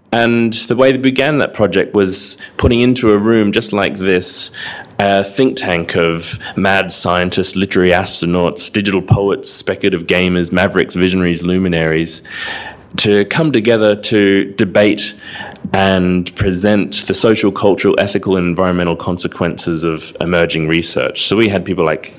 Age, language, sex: 20-39, English, male